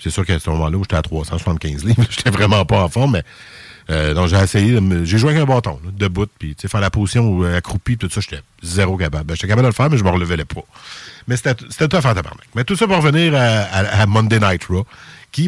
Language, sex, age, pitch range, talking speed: French, male, 50-69, 90-115 Hz, 280 wpm